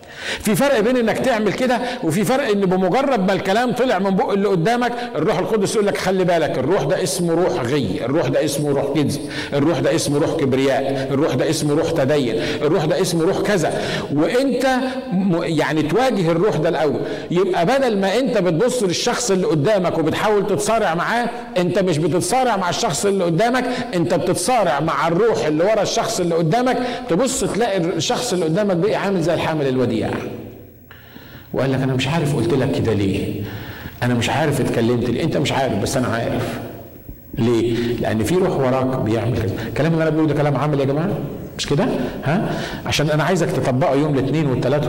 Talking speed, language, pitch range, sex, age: 185 wpm, Arabic, 125-185 Hz, male, 50-69